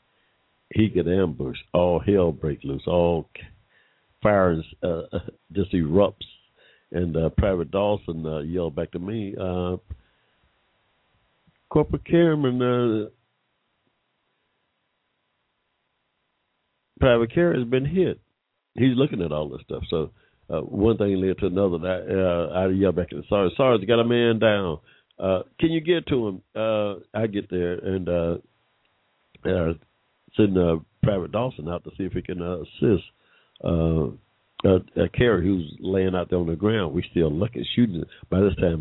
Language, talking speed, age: English, 160 wpm, 60-79